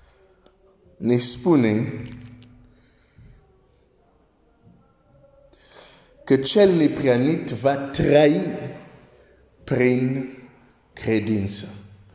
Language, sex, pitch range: Romanian, male, 120-150 Hz